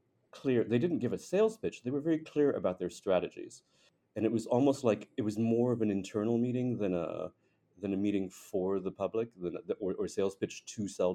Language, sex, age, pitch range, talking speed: English, male, 30-49, 90-120 Hz, 225 wpm